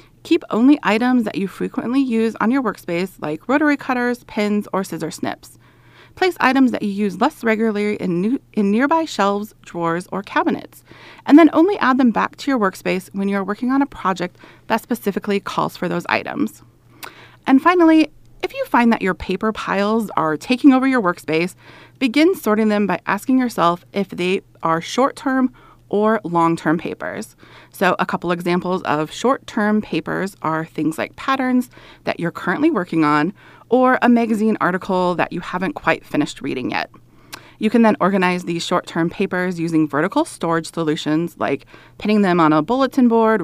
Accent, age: American, 30-49